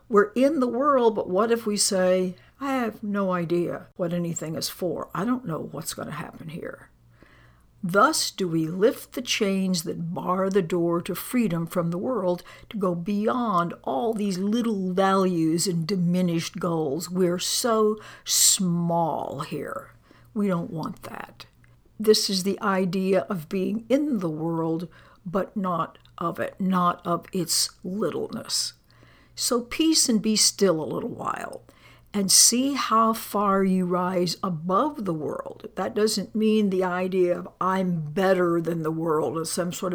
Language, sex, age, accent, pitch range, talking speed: English, female, 60-79, American, 175-215 Hz, 160 wpm